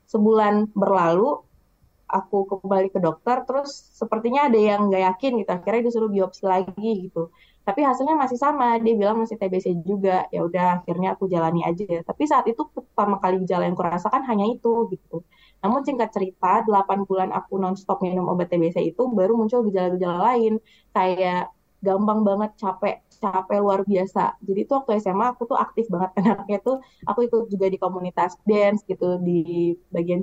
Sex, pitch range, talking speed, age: female, 180-220 Hz, 170 wpm, 20-39